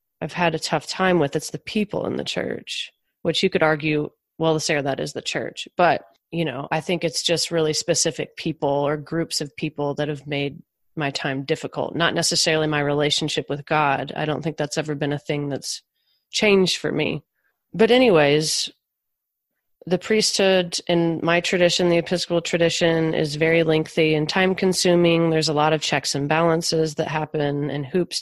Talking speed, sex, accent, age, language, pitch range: 185 wpm, female, American, 30-49, English, 145-170 Hz